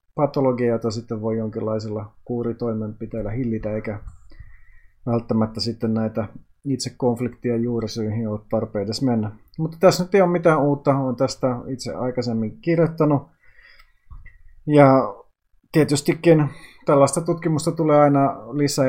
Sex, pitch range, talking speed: male, 115-140 Hz, 115 wpm